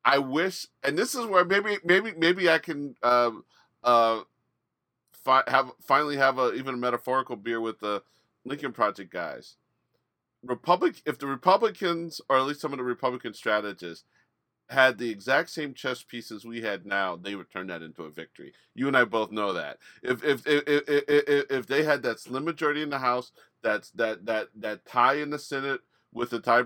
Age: 40-59